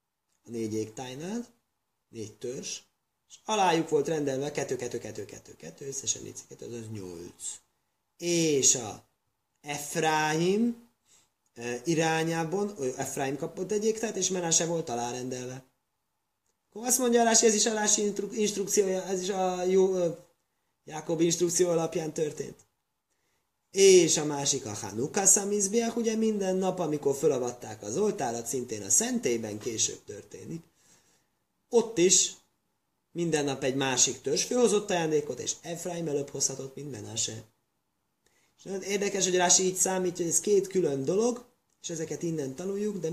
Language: Hungarian